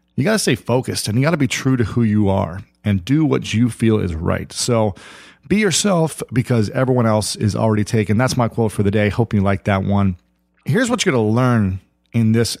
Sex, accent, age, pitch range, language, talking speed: male, American, 40-59, 100-120 Hz, English, 240 wpm